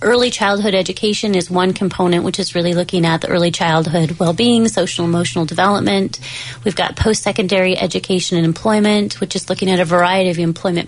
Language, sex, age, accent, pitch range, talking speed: English, female, 30-49, American, 170-200 Hz, 170 wpm